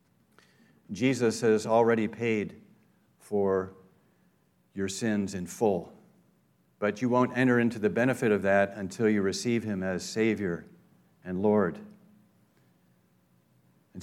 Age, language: 50-69, English